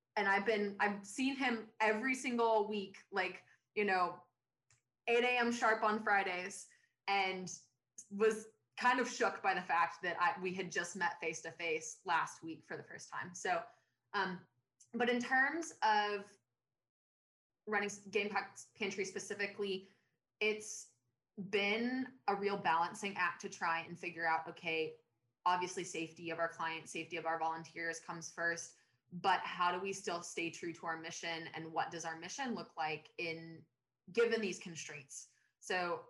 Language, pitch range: English, 165-205 Hz